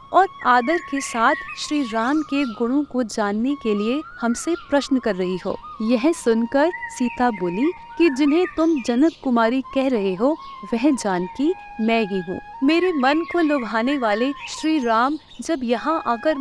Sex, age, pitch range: female, 30-49, 230-325 Hz